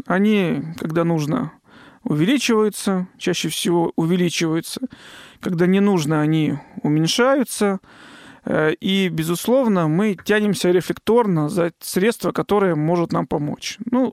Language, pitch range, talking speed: Russian, 170-220 Hz, 100 wpm